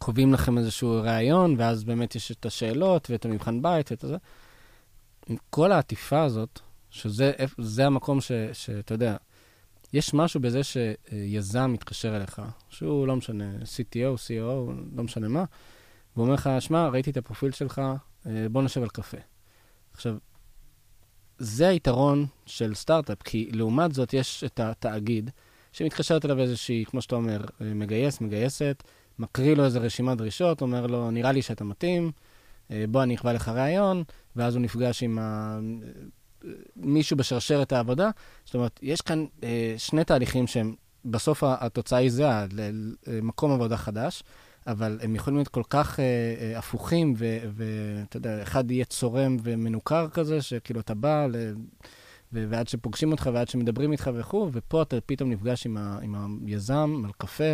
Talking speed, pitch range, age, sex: 145 wpm, 110-135 Hz, 20-39, male